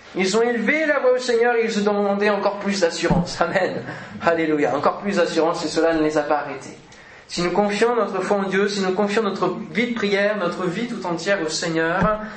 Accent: French